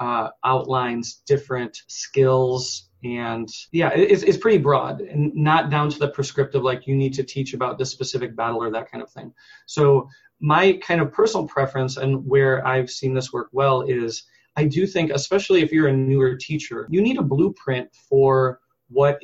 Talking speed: 185 wpm